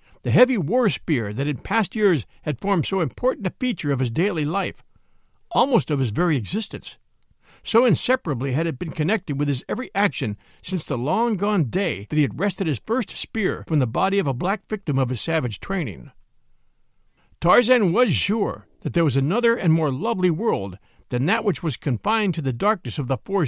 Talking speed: 195 wpm